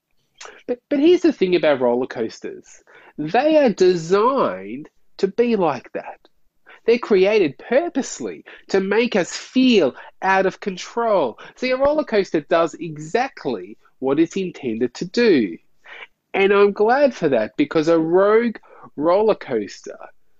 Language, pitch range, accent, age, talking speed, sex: English, 140-195 Hz, Australian, 30-49, 135 wpm, male